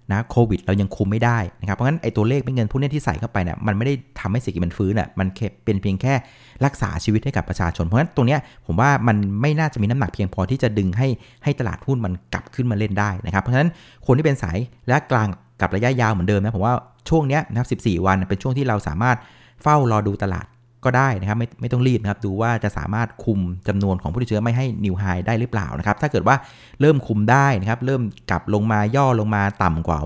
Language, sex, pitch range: Thai, male, 100-130 Hz